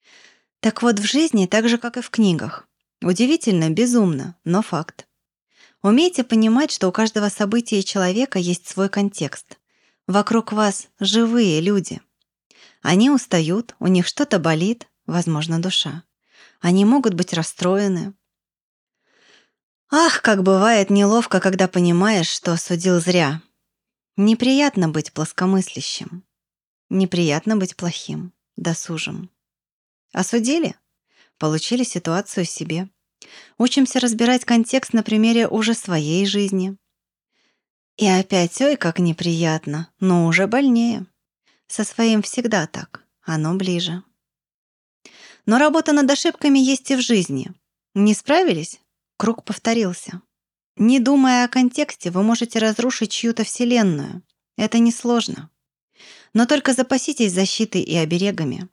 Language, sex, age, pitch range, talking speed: Russian, female, 20-39, 175-235 Hz, 115 wpm